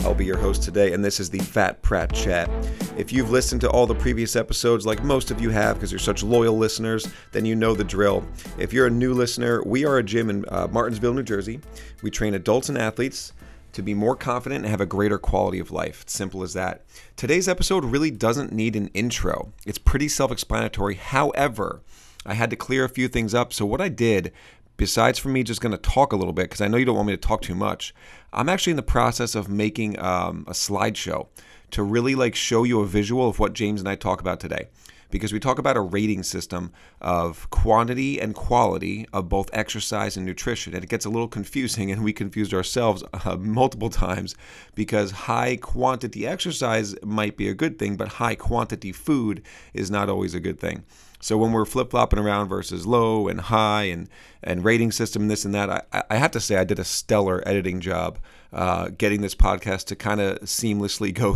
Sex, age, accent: male, 40-59, American